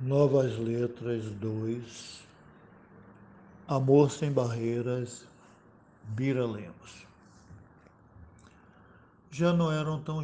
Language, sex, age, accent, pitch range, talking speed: Portuguese, male, 60-79, Brazilian, 110-135 Hz, 70 wpm